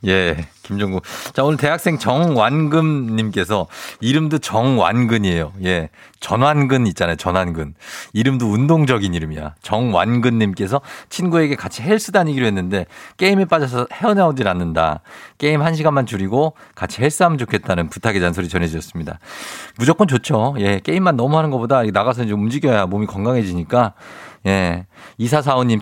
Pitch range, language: 100-145 Hz, Korean